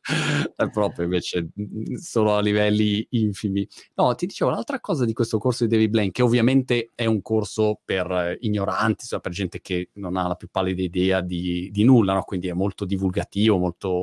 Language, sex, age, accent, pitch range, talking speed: Italian, male, 30-49, native, 105-150 Hz, 185 wpm